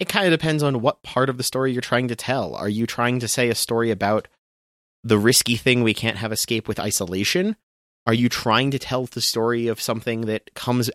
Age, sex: 30-49, male